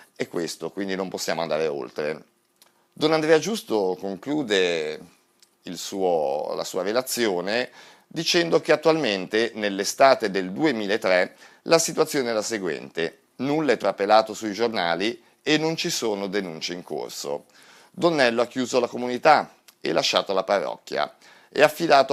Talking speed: 135 wpm